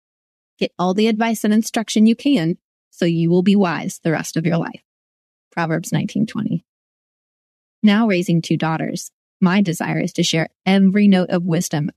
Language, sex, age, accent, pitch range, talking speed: English, female, 20-39, American, 165-210 Hz, 165 wpm